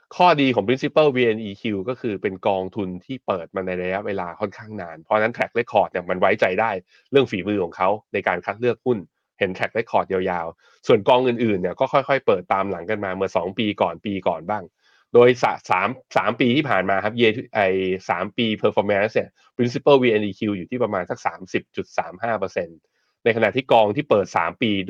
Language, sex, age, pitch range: Thai, male, 20-39, 95-130 Hz